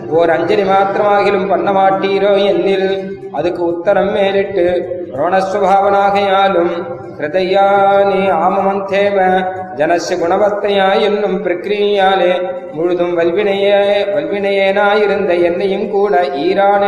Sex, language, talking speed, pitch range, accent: male, Tamil, 70 wpm, 180-200 Hz, native